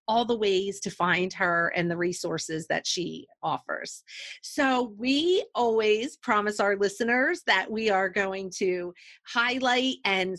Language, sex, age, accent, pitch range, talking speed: English, female, 40-59, American, 210-265 Hz, 145 wpm